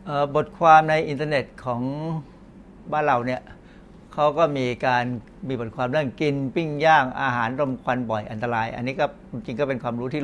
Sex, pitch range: male, 125-155 Hz